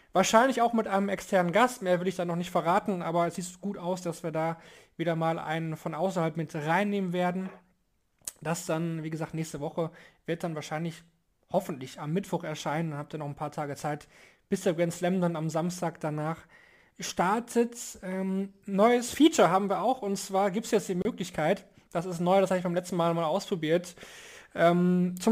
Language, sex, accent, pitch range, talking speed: German, male, German, 170-205 Hz, 200 wpm